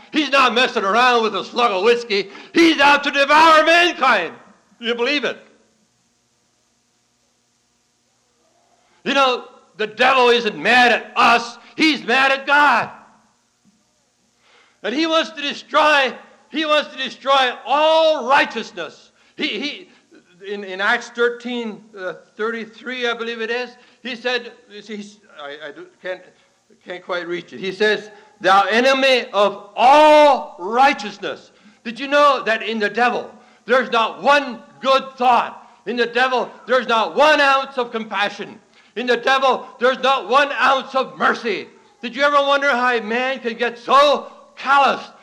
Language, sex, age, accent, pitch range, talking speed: English, male, 60-79, American, 215-275 Hz, 150 wpm